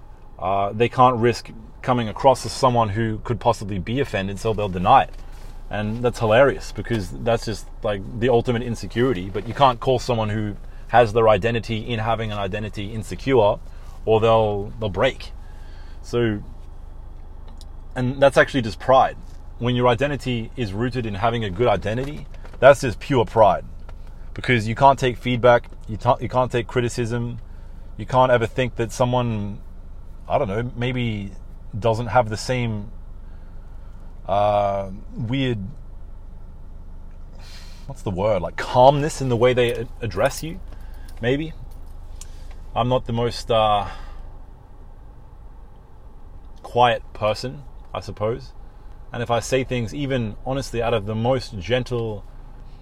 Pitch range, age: 95-125 Hz, 30-49